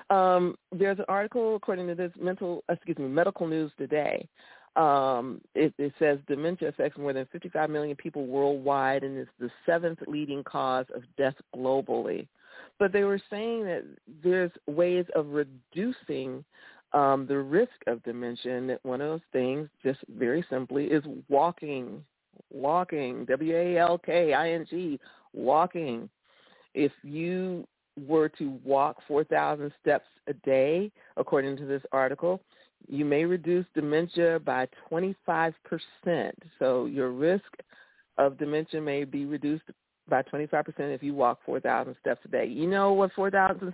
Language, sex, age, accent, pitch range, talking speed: English, female, 40-59, American, 140-180 Hz, 140 wpm